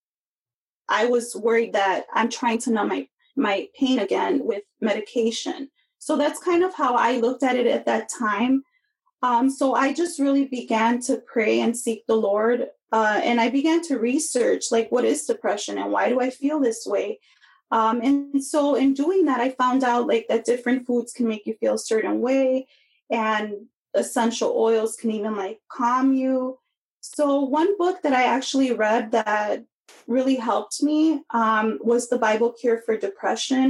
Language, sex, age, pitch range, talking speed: English, female, 20-39, 220-275 Hz, 180 wpm